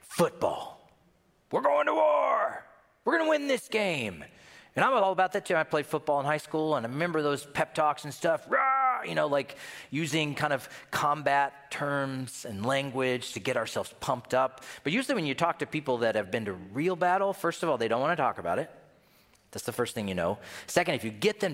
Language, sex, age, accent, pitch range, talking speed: English, male, 40-59, American, 120-160 Hz, 225 wpm